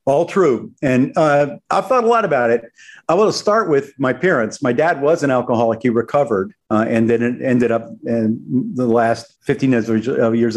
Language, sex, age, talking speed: English, male, 50-69, 195 wpm